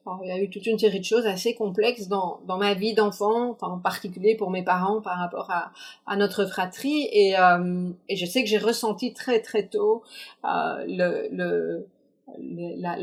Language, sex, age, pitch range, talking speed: French, female, 40-59, 185-235 Hz, 180 wpm